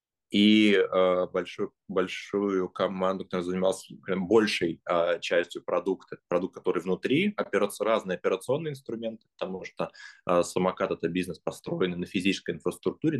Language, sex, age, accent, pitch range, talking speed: Russian, male, 20-39, native, 85-110 Hz, 130 wpm